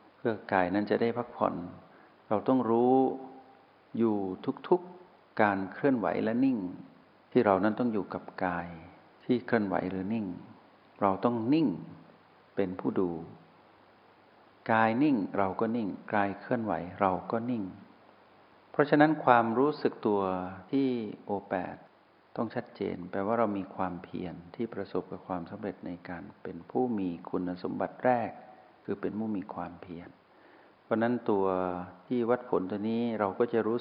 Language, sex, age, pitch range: Thai, male, 60-79, 95-120 Hz